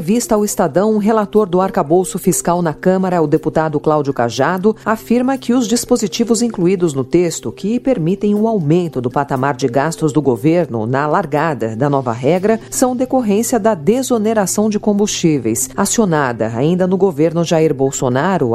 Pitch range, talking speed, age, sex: 145-200 Hz, 160 wpm, 40-59, female